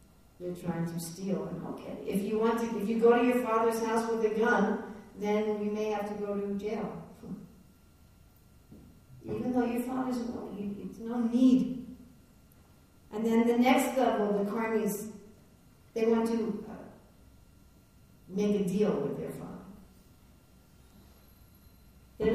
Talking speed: 150 wpm